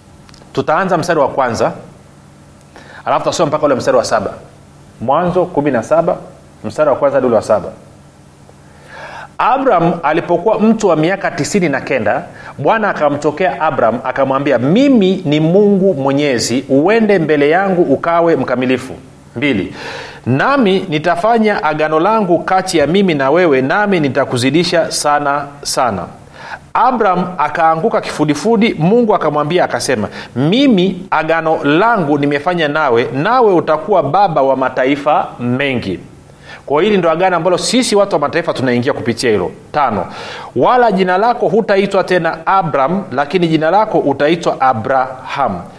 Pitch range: 140-190 Hz